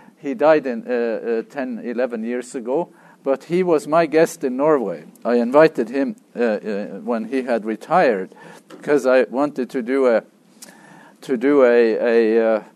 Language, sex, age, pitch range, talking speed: English, male, 50-69, 120-170 Hz, 170 wpm